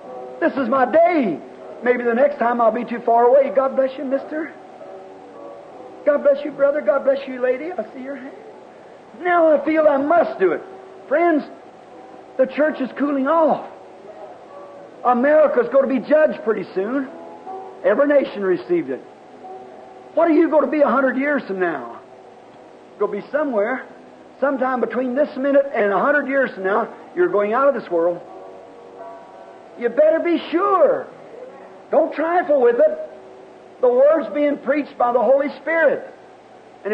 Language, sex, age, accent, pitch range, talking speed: English, male, 50-69, American, 220-305 Hz, 165 wpm